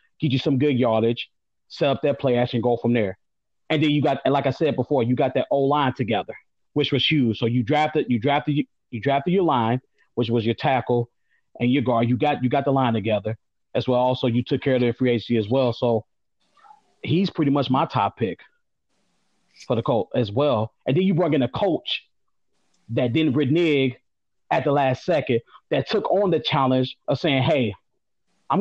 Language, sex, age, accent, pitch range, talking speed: English, male, 30-49, American, 120-160 Hz, 210 wpm